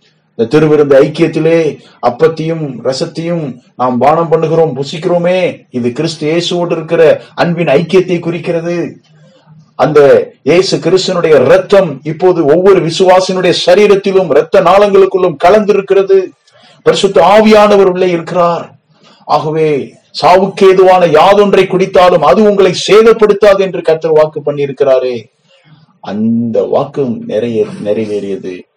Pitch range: 125-190 Hz